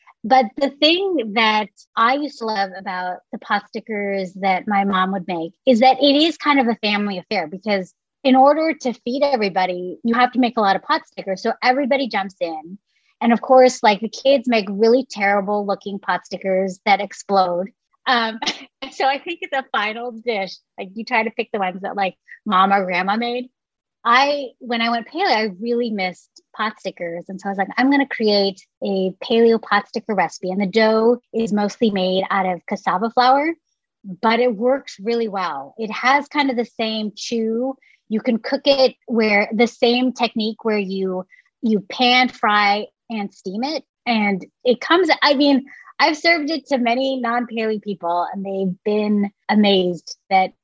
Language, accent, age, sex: English, American, 30-49, female